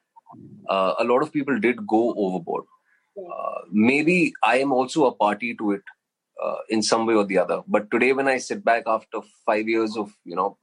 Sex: male